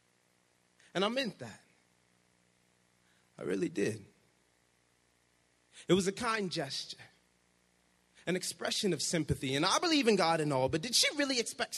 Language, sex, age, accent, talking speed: English, male, 30-49, American, 145 wpm